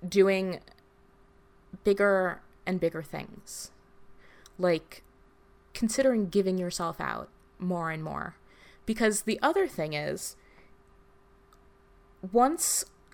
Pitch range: 180-245 Hz